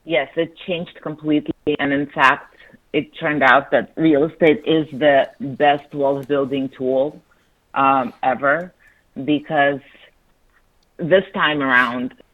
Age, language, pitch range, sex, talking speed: 30-49, English, 125-145 Hz, female, 120 wpm